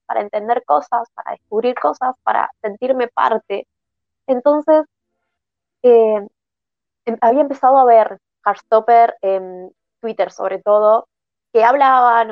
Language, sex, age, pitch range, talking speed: Spanish, female, 20-39, 190-240 Hz, 105 wpm